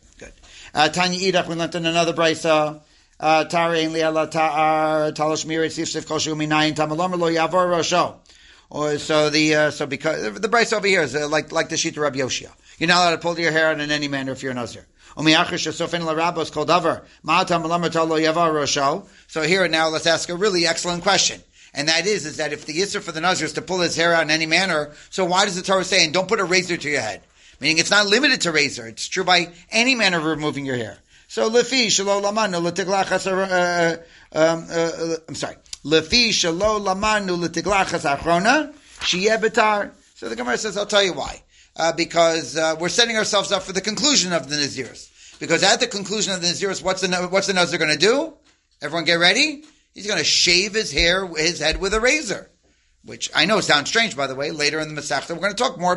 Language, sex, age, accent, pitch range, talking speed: English, male, 40-59, American, 155-190 Hz, 185 wpm